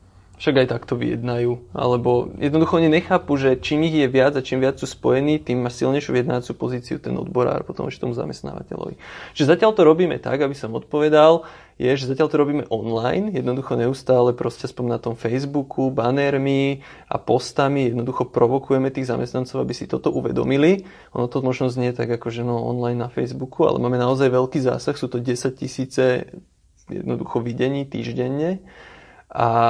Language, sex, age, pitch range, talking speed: Slovak, male, 20-39, 120-150 Hz, 175 wpm